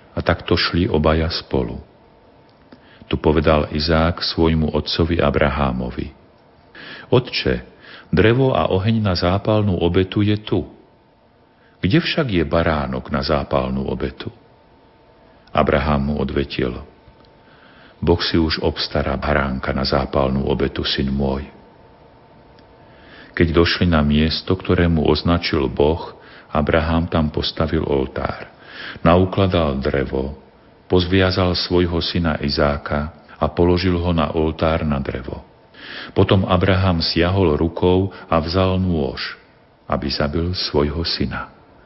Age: 50-69